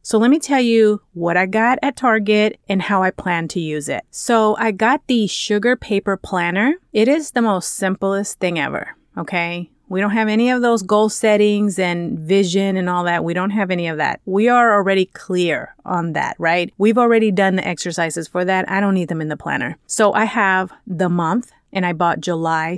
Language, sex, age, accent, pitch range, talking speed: English, female, 30-49, American, 180-220 Hz, 215 wpm